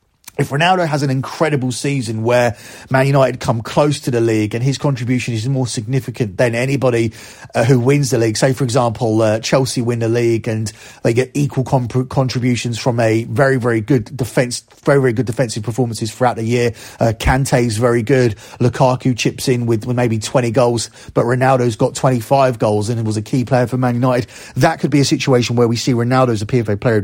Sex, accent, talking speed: male, British, 210 wpm